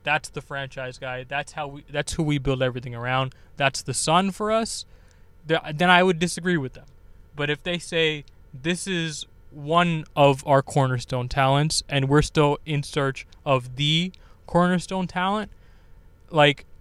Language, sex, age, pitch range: English, male, 20-39, 130-155 Hz